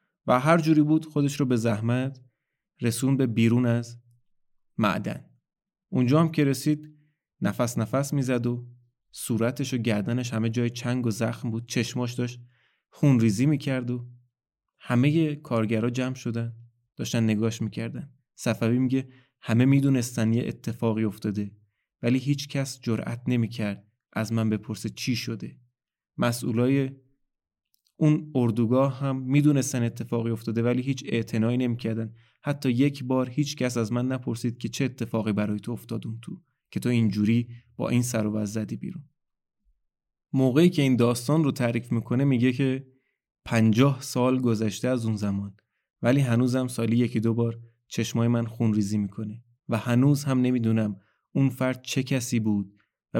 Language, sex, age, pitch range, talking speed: Persian, male, 30-49, 115-130 Hz, 150 wpm